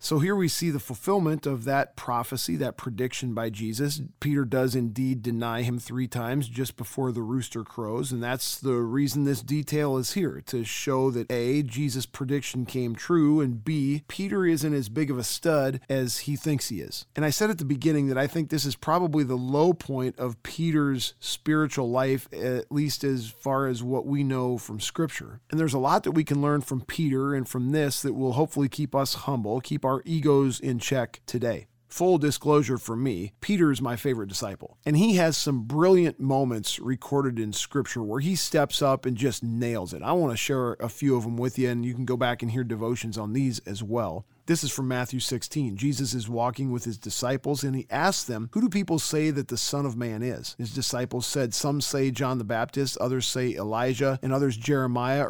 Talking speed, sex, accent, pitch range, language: 215 wpm, male, American, 120-145 Hz, English